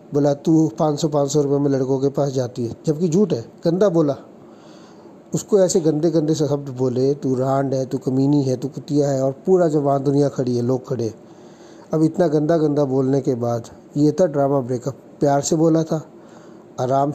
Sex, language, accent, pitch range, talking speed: male, Hindi, native, 135-160 Hz, 195 wpm